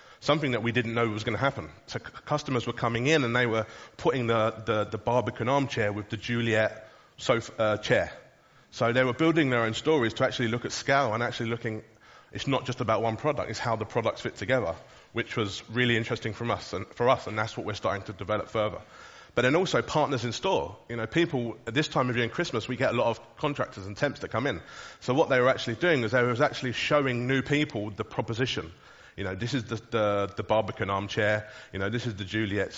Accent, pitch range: British, 110-130 Hz